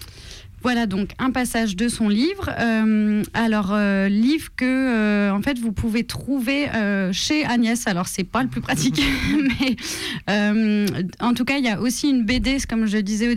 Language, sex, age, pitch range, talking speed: French, female, 30-49, 200-235 Hz, 195 wpm